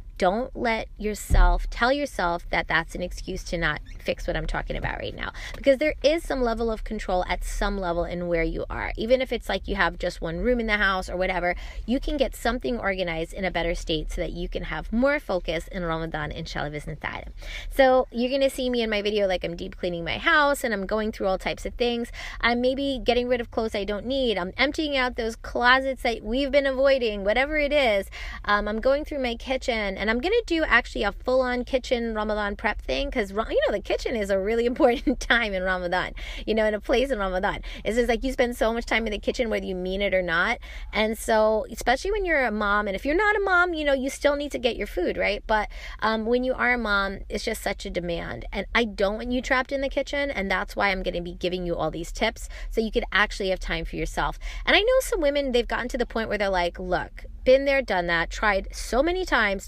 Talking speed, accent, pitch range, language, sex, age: 250 wpm, American, 185-255 Hz, English, female, 20-39